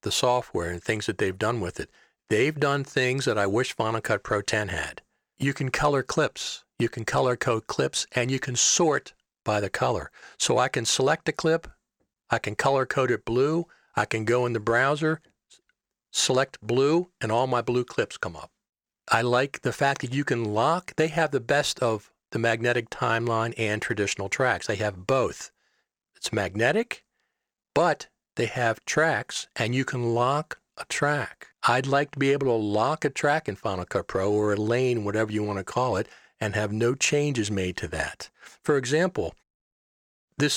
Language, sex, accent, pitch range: English, male, American, 110-140 Hz